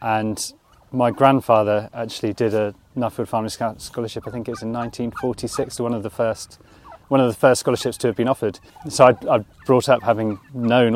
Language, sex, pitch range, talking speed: English, male, 105-120 Hz, 185 wpm